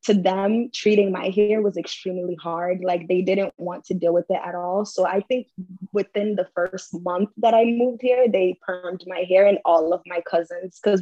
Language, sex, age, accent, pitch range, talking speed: English, female, 20-39, American, 175-205 Hz, 210 wpm